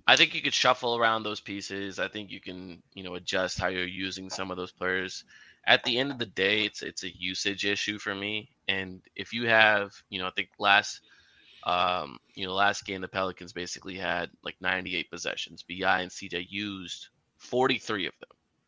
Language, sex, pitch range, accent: English, male, 95-115 Hz, American